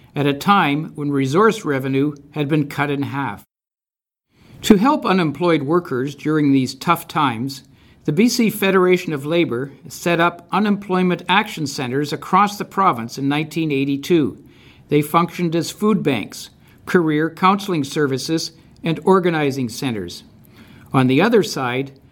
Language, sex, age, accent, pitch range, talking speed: English, male, 60-79, American, 140-175 Hz, 135 wpm